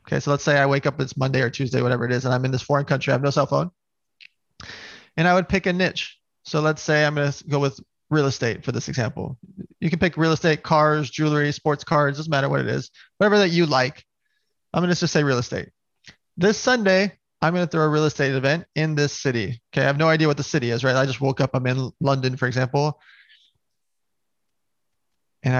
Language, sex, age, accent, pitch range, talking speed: English, male, 20-39, American, 140-175 Hz, 230 wpm